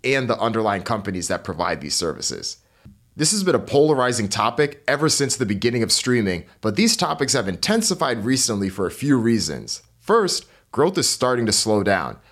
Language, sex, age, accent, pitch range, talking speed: English, male, 30-49, American, 100-130 Hz, 180 wpm